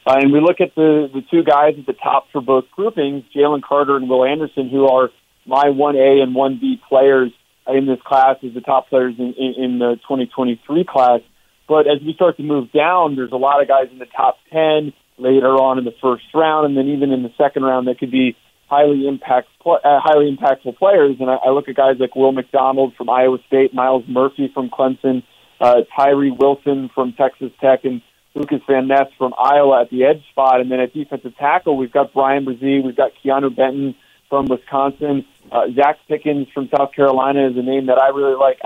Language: English